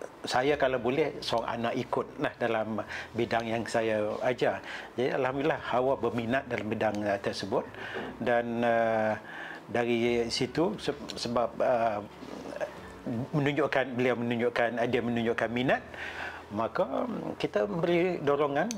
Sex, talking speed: male, 110 wpm